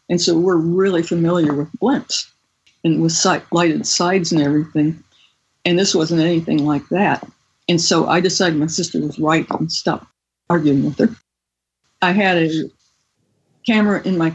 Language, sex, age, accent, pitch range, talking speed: English, female, 60-79, American, 155-180 Hz, 160 wpm